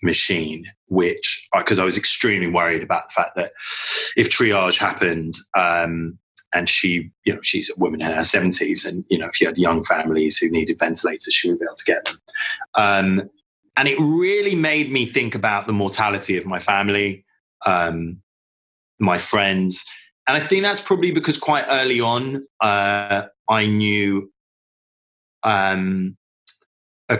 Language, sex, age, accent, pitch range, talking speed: English, male, 20-39, British, 95-140 Hz, 160 wpm